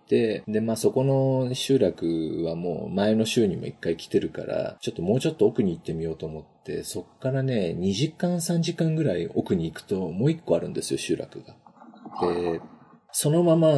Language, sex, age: Japanese, male, 40-59